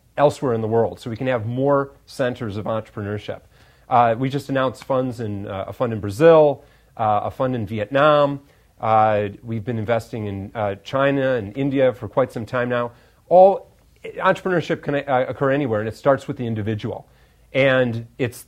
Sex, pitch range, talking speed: male, 110-140 Hz, 180 wpm